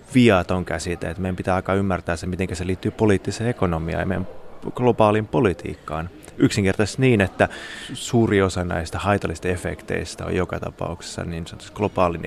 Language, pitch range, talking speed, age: Finnish, 85-105 Hz, 145 wpm, 30-49